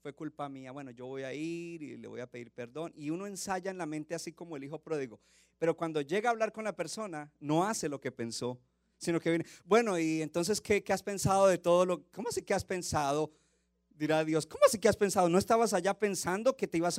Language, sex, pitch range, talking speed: Spanish, male, 165-210 Hz, 245 wpm